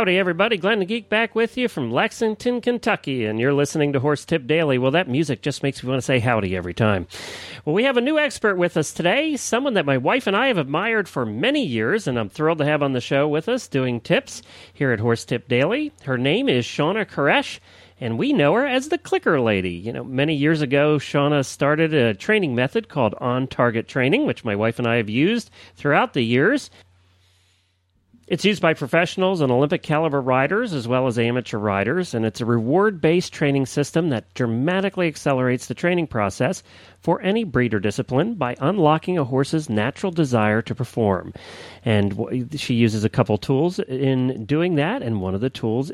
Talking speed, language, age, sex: 200 wpm, English, 40-59, male